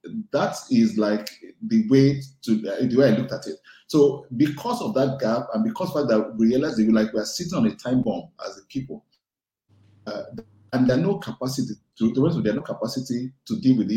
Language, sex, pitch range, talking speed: English, male, 110-145 Hz, 245 wpm